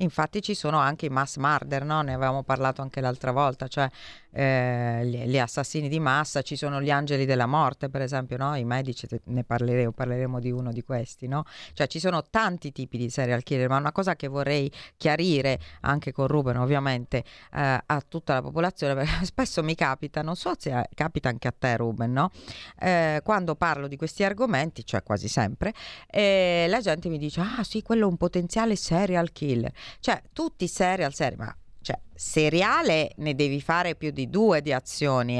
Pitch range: 125-165 Hz